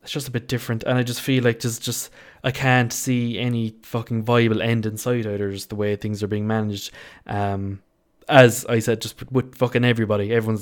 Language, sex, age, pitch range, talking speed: English, male, 20-39, 105-125 Hz, 210 wpm